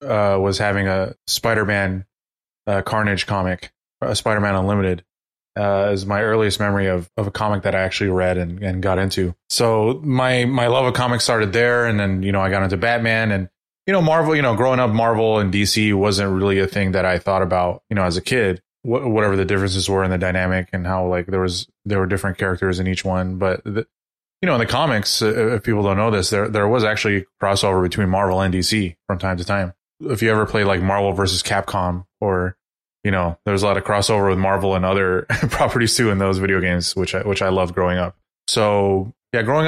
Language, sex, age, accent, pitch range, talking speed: English, male, 20-39, American, 95-110 Hz, 230 wpm